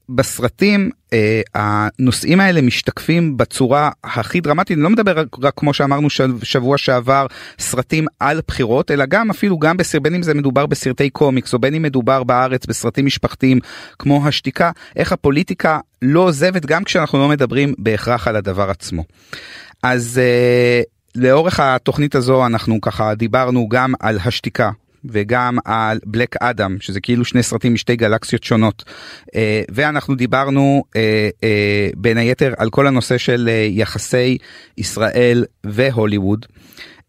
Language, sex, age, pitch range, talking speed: Hebrew, male, 30-49, 110-135 Hz, 135 wpm